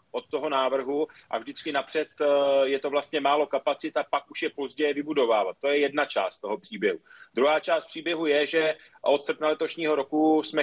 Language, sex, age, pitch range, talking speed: Czech, male, 40-59, 140-160 Hz, 185 wpm